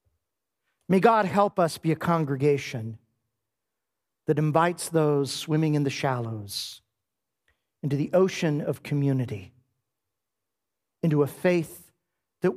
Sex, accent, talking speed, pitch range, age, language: male, American, 110 wpm, 135-180 Hz, 50-69, English